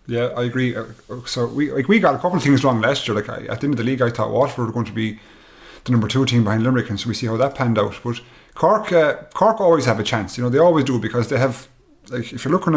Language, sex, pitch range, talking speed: English, male, 115-135 Hz, 310 wpm